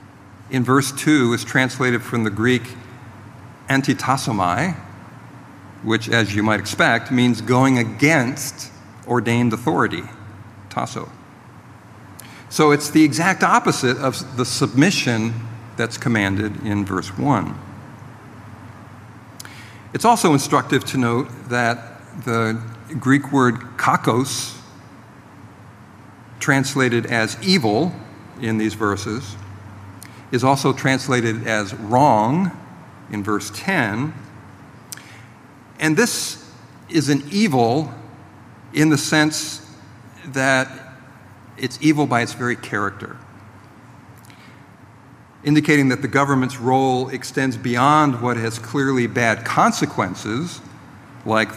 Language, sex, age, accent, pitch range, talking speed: English, male, 50-69, American, 110-135 Hz, 100 wpm